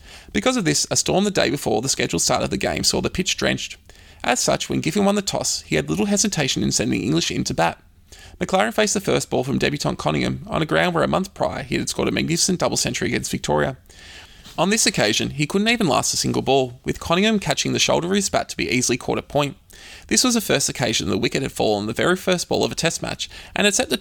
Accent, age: Australian, 20-39